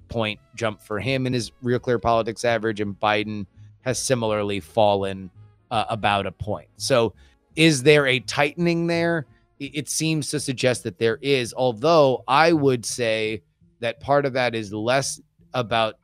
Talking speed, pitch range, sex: 160 wpm, 105-120 Hz, male